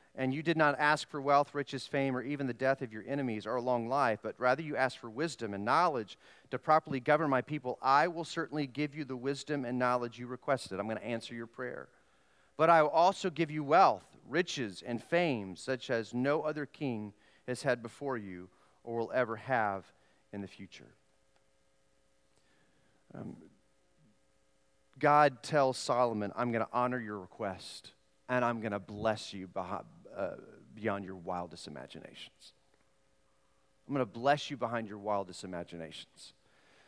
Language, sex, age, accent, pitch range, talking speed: English, male, 40-59, American, 105-150 Hz, 170 wpm